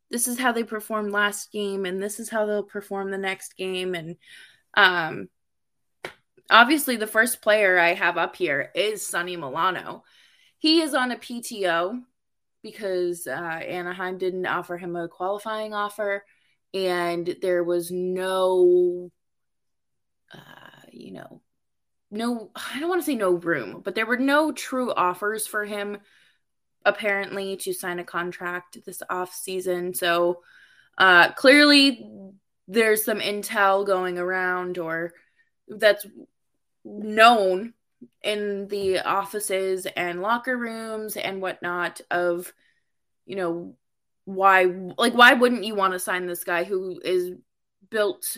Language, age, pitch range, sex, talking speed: English, 20-39, 180-220 Hz, female, 135 wpm